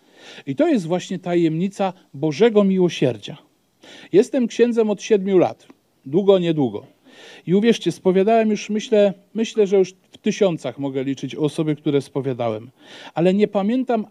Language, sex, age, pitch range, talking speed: Polish, male, 40-59, 160-200 Hz, 140 wpm